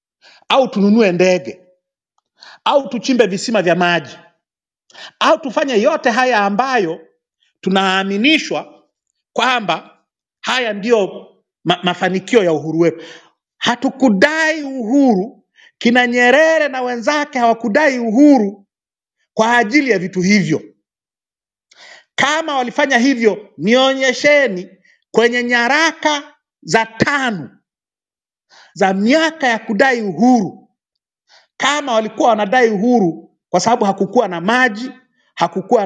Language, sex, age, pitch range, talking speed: Swahili, male, 50-69, 185-265 Hz, 95 wpm